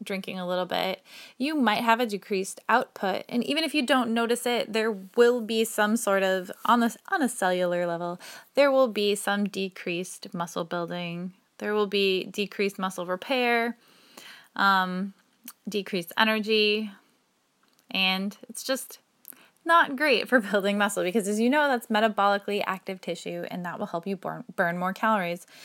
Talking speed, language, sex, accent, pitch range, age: 160 wpm, English, female, American, 190-235 Hz, 20-39